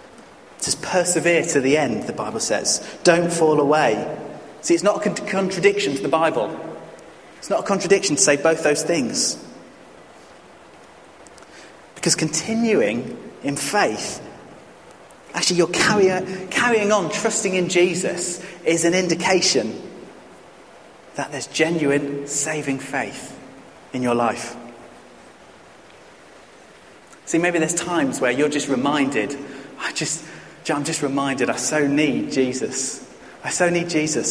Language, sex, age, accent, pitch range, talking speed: English, male, 30-49, British, 140-175 Hz, 125 wpm